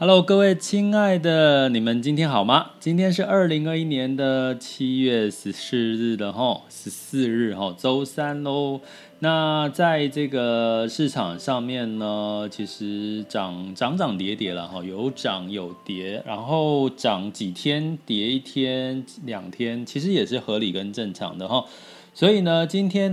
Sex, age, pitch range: male, 20-39, 105-150 Hz